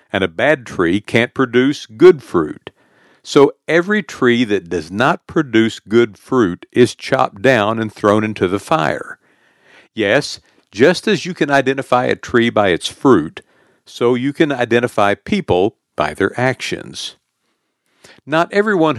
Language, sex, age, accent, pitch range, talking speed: English, male, 60-79, American, 105-155 Hz, 145 wpm